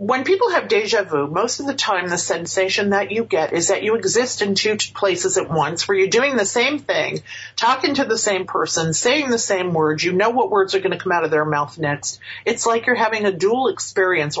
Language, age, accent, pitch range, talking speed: English, 40-59, American, 155-215 Hz, 240 wpm